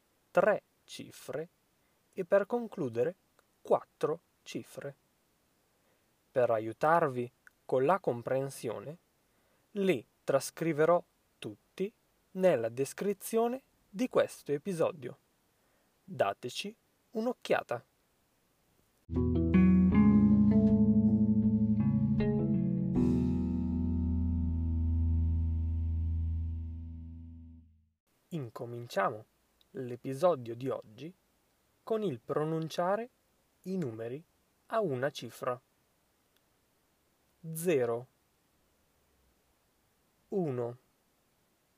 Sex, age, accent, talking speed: male, 20-39, native, 50 wpm